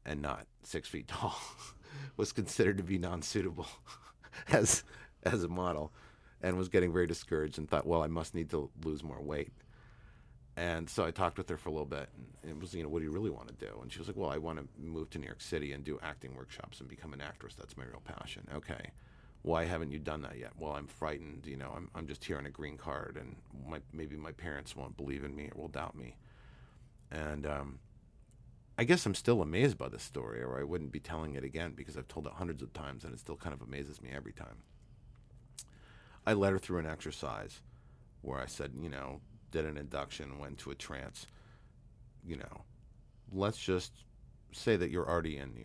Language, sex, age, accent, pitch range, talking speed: English, male, 40-59, American, 70-90 Hz, 225 wpm